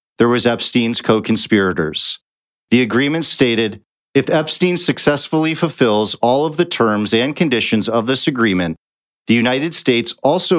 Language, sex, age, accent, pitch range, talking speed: English, male, 40-59, American, 110-140 Hz, 135 wpm